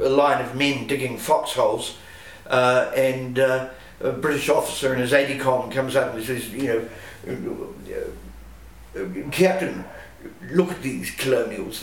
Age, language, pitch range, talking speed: 50-69, English, 130-195 Hz, 145 wpm